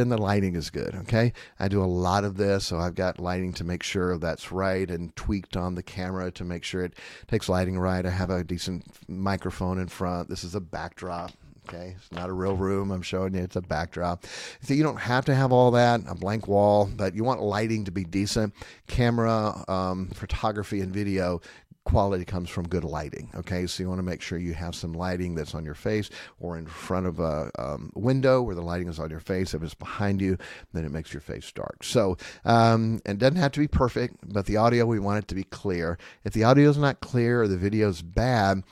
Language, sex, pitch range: Japanese, male, 90-110 Hz